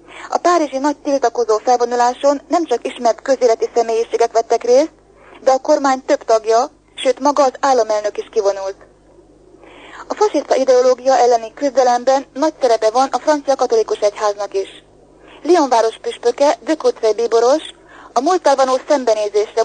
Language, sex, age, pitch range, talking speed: Hungarian, female, 30-49, 220-285 Hz, 135 wpm